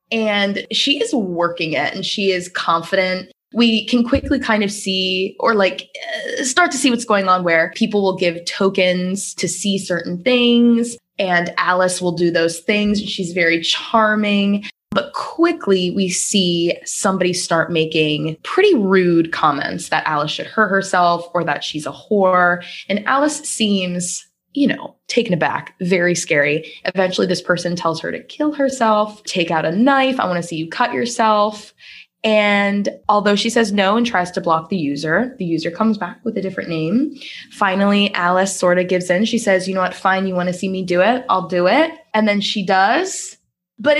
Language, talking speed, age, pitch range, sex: English, 185 wpm, 20-39, 180-245 Hz, female